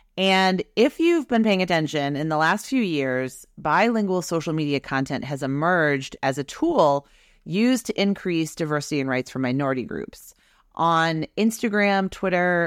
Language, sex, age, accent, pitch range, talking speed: English, female, 30-49, American, 140-180 Hz, 150 wpm